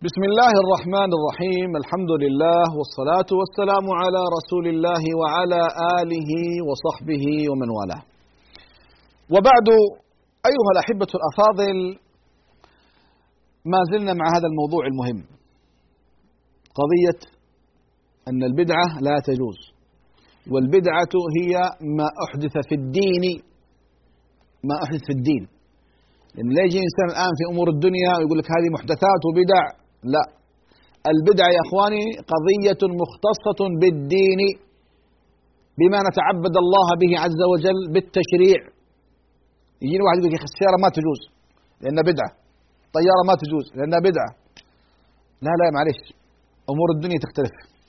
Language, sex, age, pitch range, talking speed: Arabic, male, 40-59, 145-185 Hz, 115 wpm